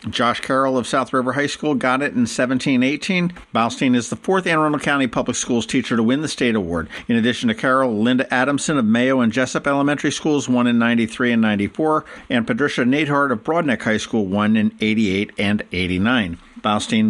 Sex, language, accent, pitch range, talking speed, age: male, English, American, 110-170 Hz, 195 wpm, 50-69